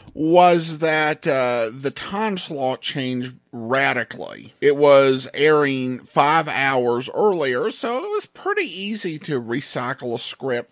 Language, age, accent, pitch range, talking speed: English, 50-69, American, 140-235 Hz, 130 wpm